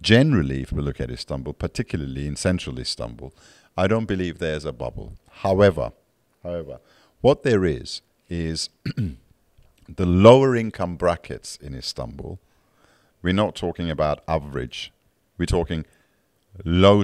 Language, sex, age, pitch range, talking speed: English, male, 50-69, 80-95 Hz, 130 wpm